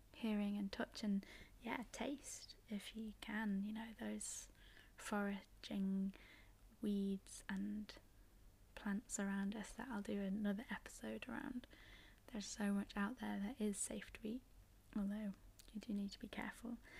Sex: female